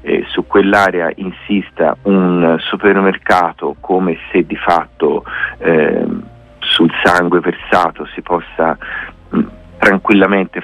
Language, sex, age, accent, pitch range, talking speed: Italian, male, 40-59, native, 85-100 Hz, 90 wpm